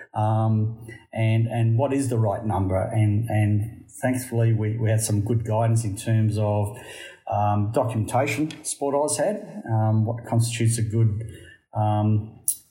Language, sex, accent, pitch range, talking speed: English, male, Australian, 110-120 Hz, 140 wpm